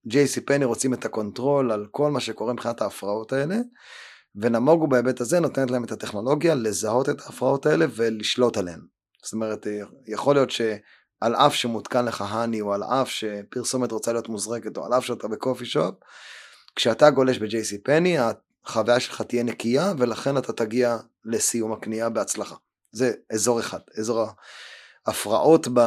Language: Hebrew